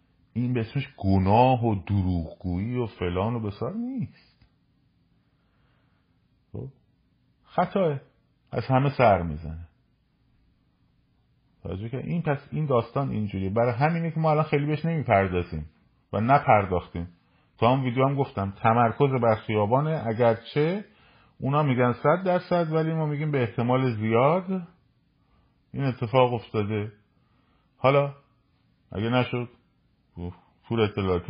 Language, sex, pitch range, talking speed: Persian, male, 85-130 Hz, 110 wpm